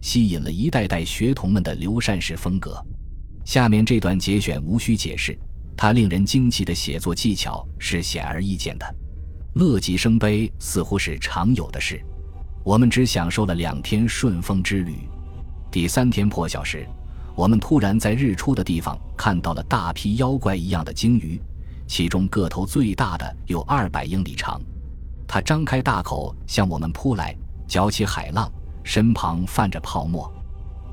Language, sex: Chinese, male